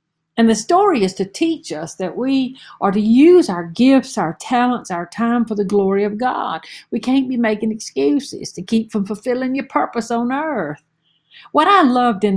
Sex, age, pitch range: female, 60-79, 170-235 Hz